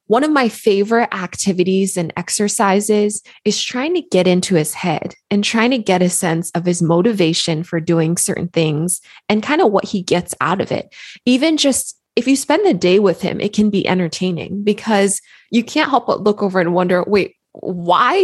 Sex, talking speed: female, 195 wpm